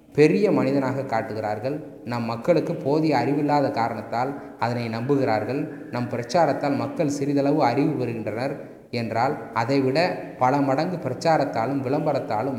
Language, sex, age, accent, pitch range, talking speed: Tamil, male, 20-39, native, 125-150 Hz, 105 wpm